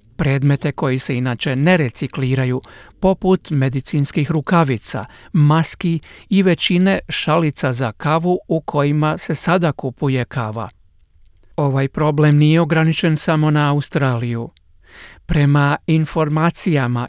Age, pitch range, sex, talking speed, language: 50-69, 140-165 Hz, male, 105 wpm, Croatian